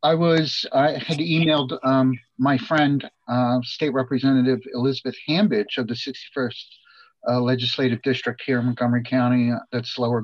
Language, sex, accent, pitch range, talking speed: English, male, American, 125-155 Hz, 145 wpm